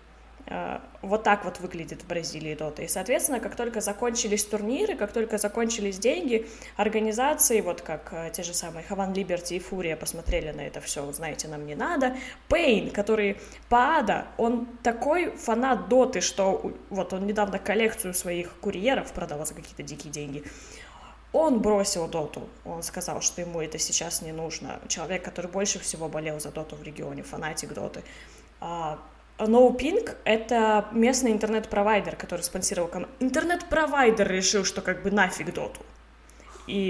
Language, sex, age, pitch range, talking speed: Russian, female, 20-39, 170-230 Hz, 155 wpm